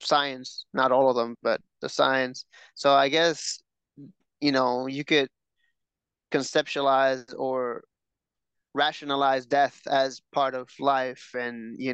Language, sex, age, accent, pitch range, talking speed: English, male, 20-39, American, 130-145 Hz, 125 wpm